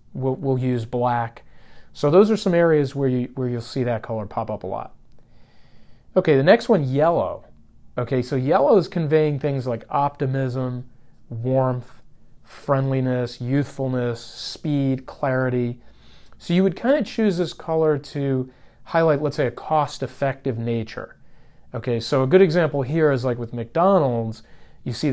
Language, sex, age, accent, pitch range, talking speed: English, male, 30-49, American, 120-145 Hz, 155 wpm